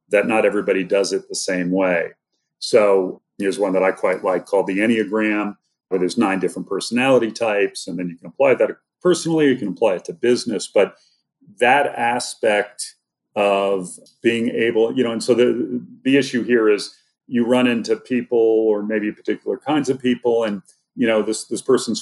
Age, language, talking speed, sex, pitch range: 40-59, English, 185 wpm, male, 100-125 Hz